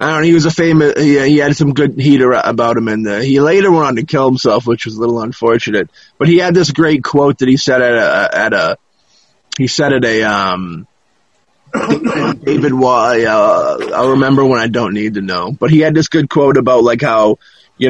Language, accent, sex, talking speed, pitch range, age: English, American, male, 225 wpm, 120-150 Hz, 20-39